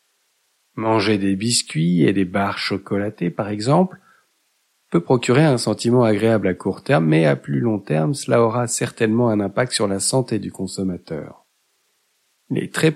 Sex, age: male, 50-69